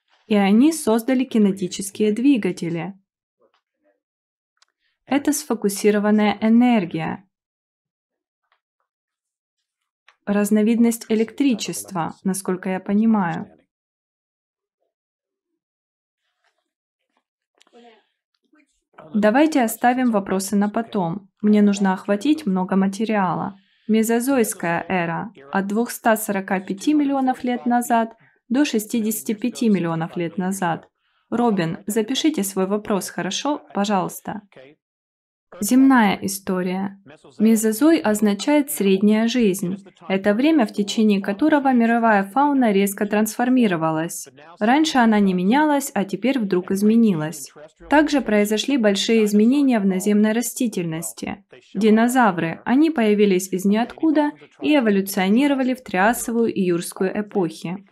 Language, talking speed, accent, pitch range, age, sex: Russian, 85 wpm, native, 190-245 Hz, 20-39, female